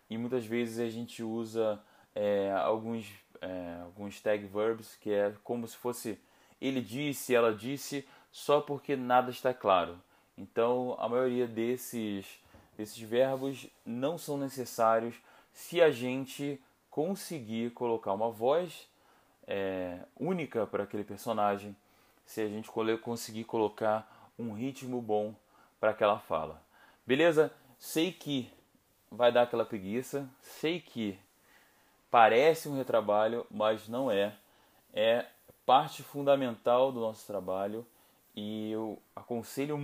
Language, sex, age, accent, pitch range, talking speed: Portuguese, male, 20-39, Brazilian, 105-130 Hz, 125 wpm